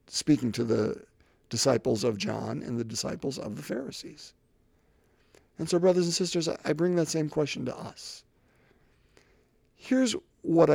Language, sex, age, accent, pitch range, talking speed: English, male, 50-69, American, 150-200 Hz, 145 wpm